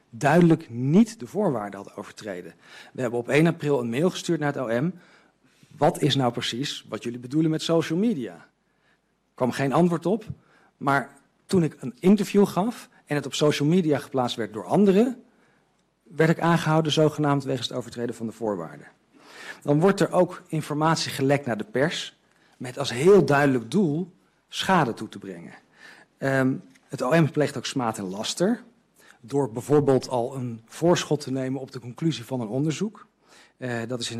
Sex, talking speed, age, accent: male, 175 wpm, 50-69, Dutch